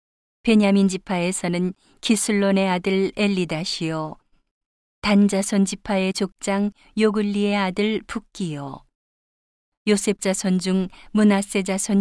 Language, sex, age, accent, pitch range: Korean, female, 40-59, native, 180-205 Hz